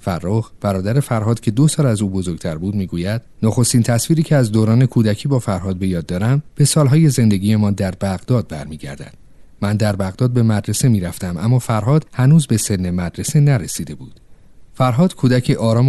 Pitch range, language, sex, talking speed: 95-125 Hz, Persian, male, 175 wpm